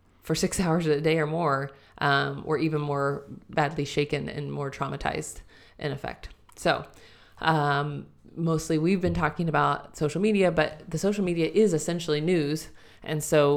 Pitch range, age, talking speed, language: 145-170 Hz, 30-49, 160 wpm, English